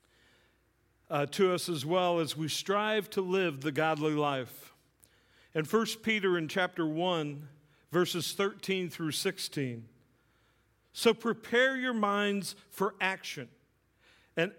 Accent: American